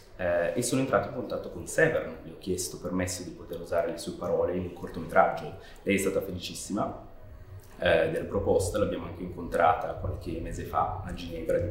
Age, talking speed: 30-49, 185 wpm